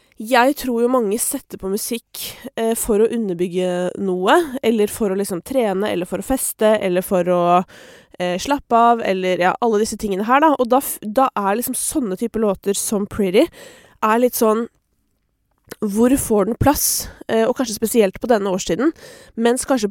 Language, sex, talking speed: English, female, 180 wpm